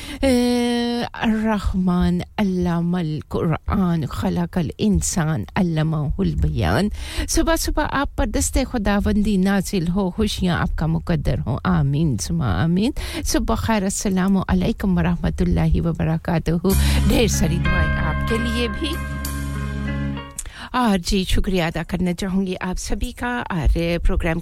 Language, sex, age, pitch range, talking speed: English, female, 50-69, 160-210 Hz, 105 wpm